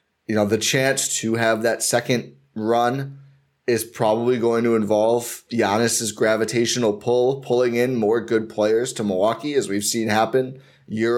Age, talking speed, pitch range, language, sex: 20-39, 155 wpm, 110-125 Hz, English, male